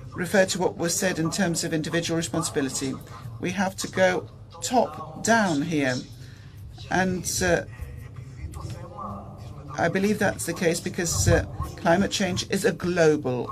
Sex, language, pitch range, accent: female, Greek, 125-175 Hz, British